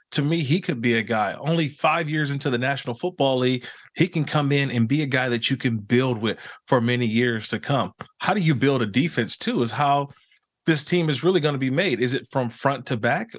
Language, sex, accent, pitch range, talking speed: English, male, American, 120-150 Hz, 250 wpm